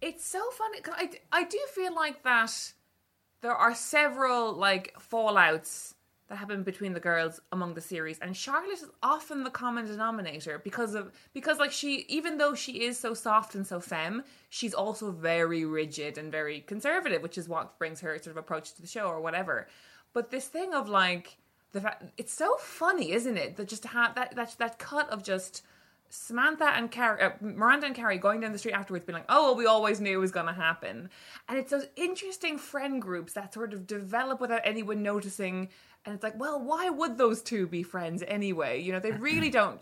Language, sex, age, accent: English, female, 20-39, Irish